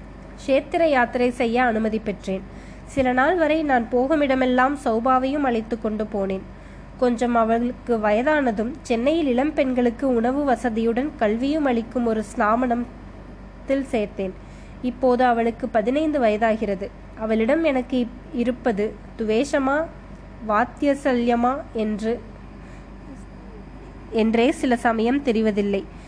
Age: 20-39